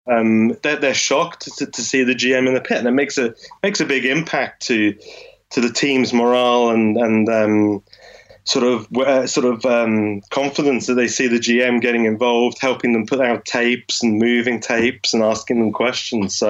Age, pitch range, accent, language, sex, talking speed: 20-39, 115-135 Hz, British, English, male, 200 wpm